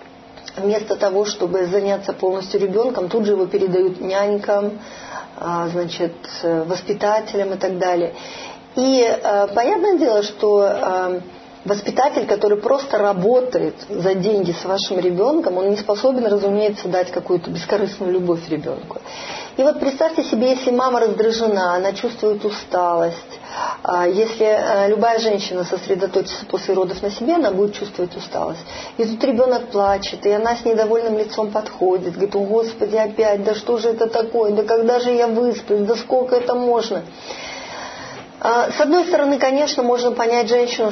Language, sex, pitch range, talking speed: Russian, female, 195-250 Hz, 140 wpm